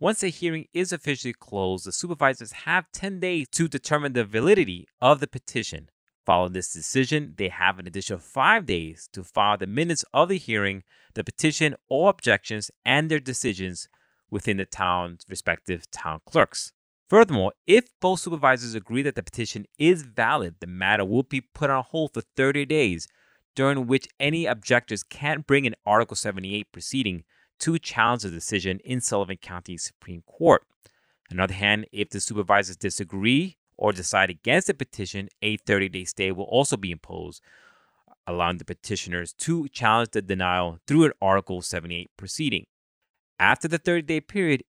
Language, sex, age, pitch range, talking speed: English, male, 30-49, 95-145 Hz, 165 wpm